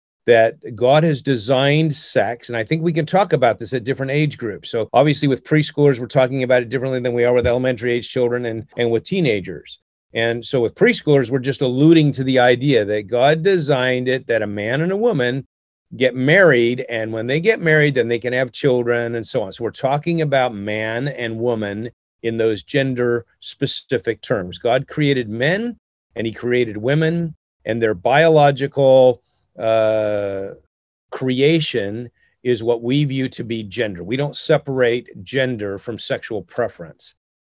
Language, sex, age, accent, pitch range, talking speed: English, male, 40-59, American, 110-140 Hz, 175 wpm